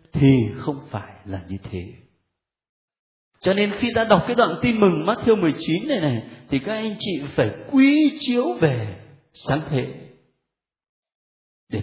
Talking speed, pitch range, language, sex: 150 wpm, 125-205 Hz, Vietnamese, male